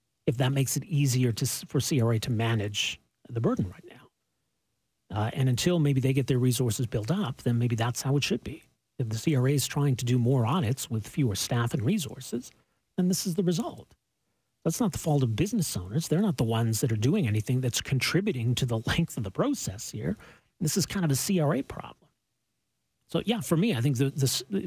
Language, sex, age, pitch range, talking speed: English, male, 40-59, 115-150 Hz, 215 wpm